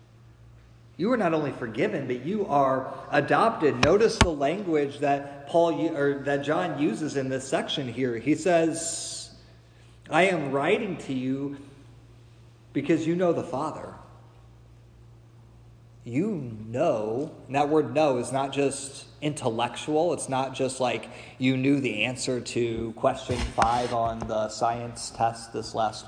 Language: English